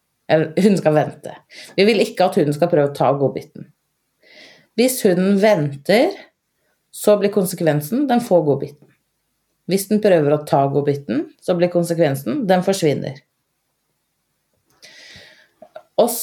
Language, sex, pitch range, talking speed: Swedish, female, 155-215 Hz, 125 wpm